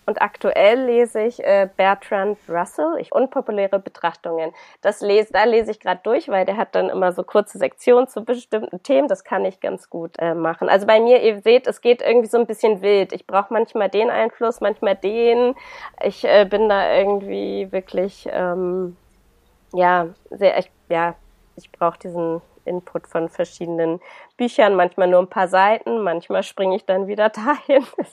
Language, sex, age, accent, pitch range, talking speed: German, female, 20-39, German, 180-225 Hz, 175 wpm